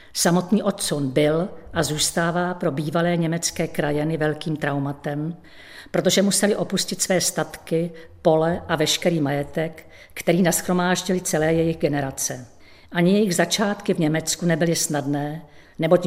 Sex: female